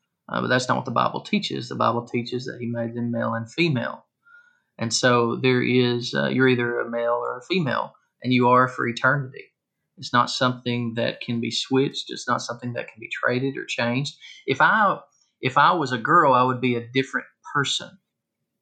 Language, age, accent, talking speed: English, 30-49, American, 195 wpm